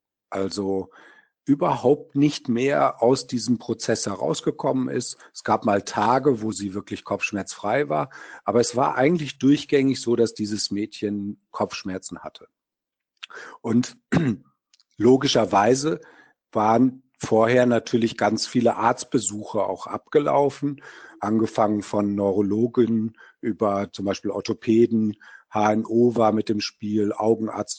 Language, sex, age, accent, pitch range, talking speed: German, male, 50-69, German, 105-145 Hz, 110 wpm